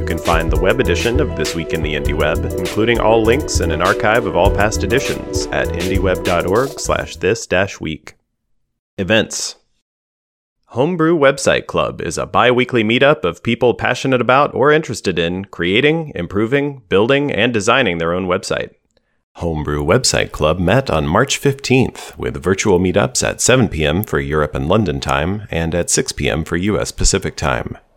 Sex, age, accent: male, 30-49, American